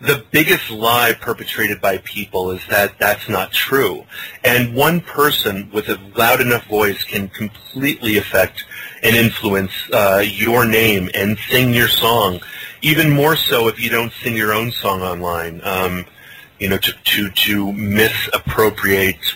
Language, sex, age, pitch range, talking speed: English, male, 30-49, 100-120 Hz, 150 wpm